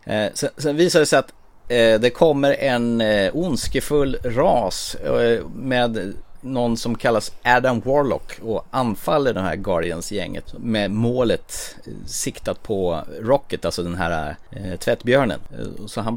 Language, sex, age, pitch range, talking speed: Swedish, male, 30-49, 95-120 Hz, 150 wpm